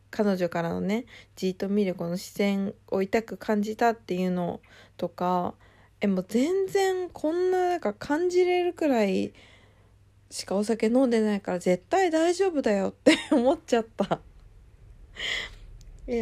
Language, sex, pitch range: Japanese, female, 175-245 Hz